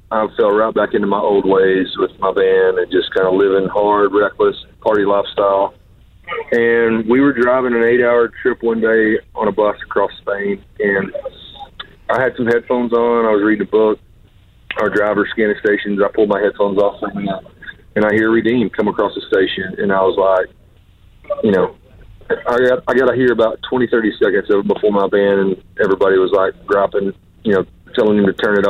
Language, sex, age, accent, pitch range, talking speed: English, male, 30-49, American, 100-120 Hz, 200 wpm